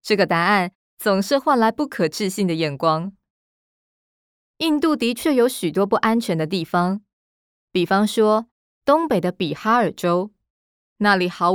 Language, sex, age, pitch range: Chinese, female, 20-39, 175-225 Hz